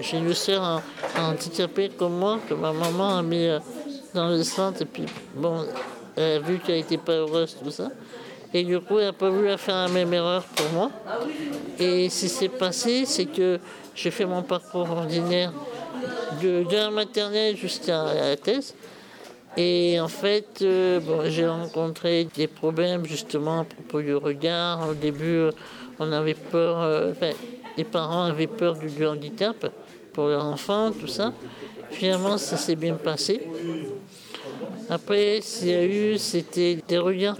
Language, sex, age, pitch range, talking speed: French, male, 60-79, 160-185 Hz, 165 wpm